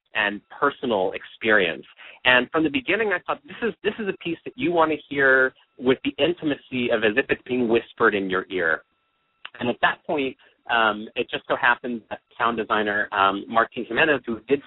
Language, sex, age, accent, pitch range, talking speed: English, male, 30-49, American, 100-130 Hz, 200 wpm